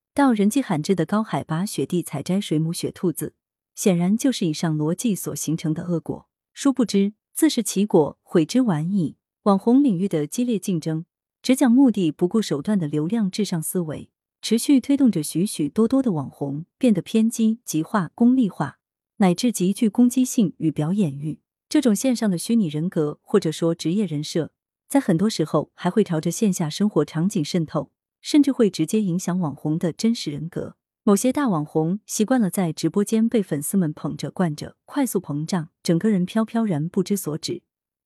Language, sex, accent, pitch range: Chinese, female, native, 160-220 Hz